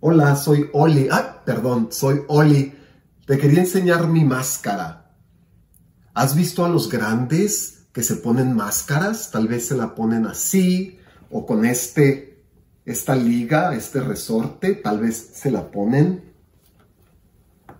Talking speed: 130 wpm